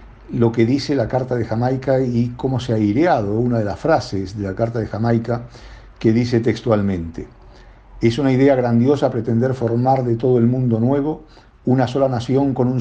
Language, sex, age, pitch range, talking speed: Spanish, male, 50-69, 105-130 Hz, 185 wpm